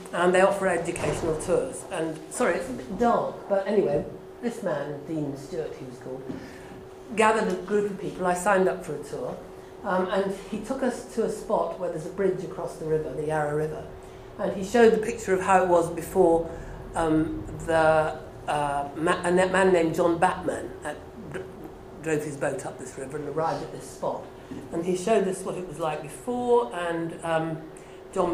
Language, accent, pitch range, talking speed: English, British, 160-210 Hz, 195 wpm